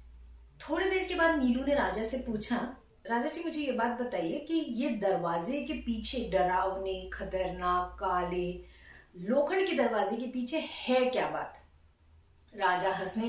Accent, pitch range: native, 190-255 Hz